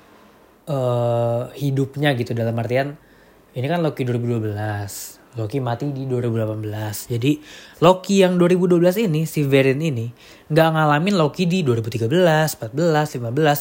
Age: 20-39